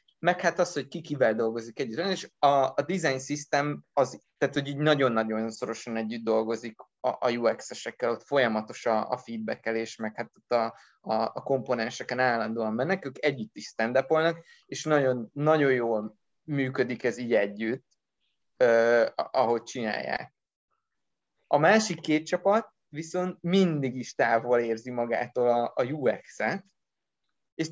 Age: 20-39